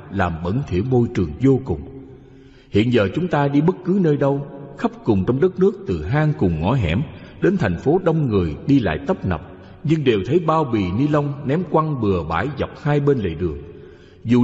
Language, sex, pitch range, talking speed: Vietnamese, male, 105-160 Hz, 215 wpm